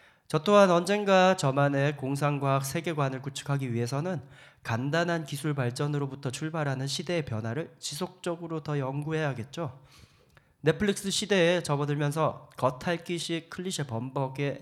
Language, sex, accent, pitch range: Korean, male, native, 125-160 Hz